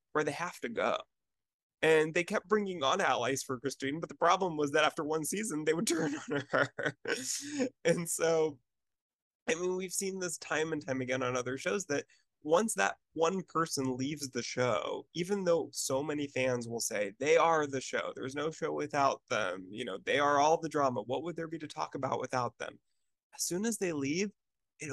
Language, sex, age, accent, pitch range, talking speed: English, male, 20-39, American, 130-170 Hz, 205 wpm